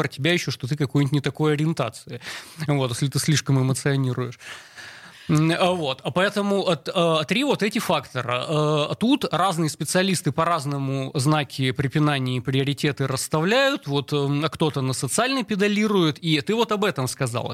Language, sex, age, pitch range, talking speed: Russian, male, 20-39, 140-190 Hz, 135 wpm